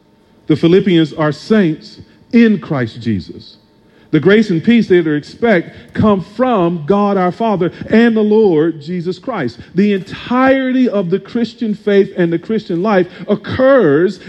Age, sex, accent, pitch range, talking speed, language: 40-59, male, American, 150-215 Hz, 145 wpm, English